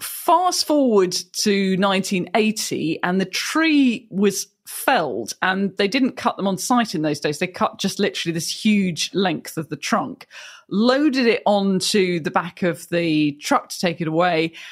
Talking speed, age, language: 165 wpm, 40-59, English